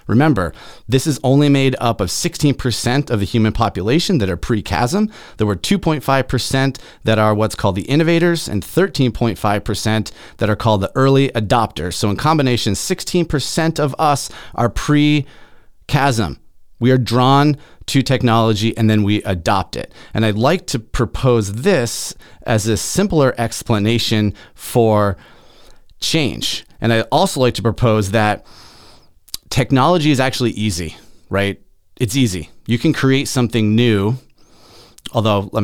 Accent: American